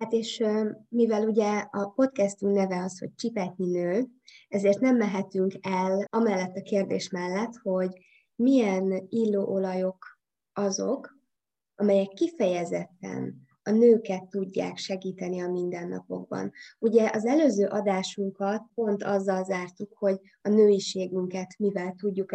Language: English